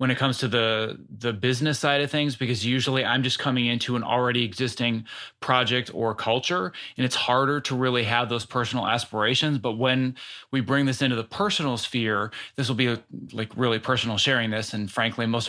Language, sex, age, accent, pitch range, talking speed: English, male, 30-49, American, 120-145 Hz, 200 wpm